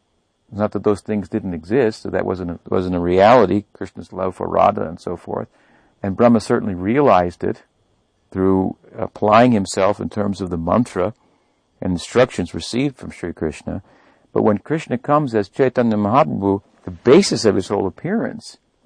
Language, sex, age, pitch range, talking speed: English, male, 60-79, 95-115 Hz, 170 wpm